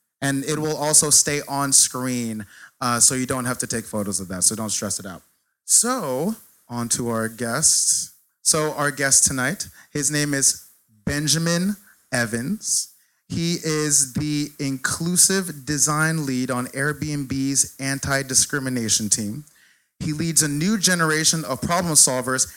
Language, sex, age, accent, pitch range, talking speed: English, male, 30-49, American, 120-150 Hz, 145 wpm